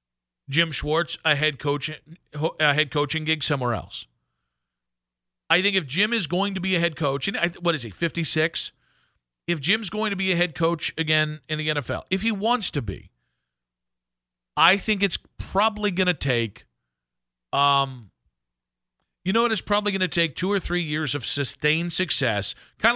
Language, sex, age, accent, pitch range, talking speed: English, male, 40-59, American, 125-185 Hz, 180 wpm